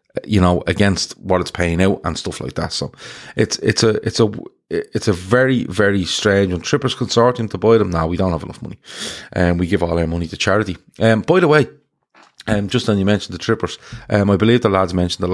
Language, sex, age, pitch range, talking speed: English, male, 30-49, 85-100 Hz, 245 wpm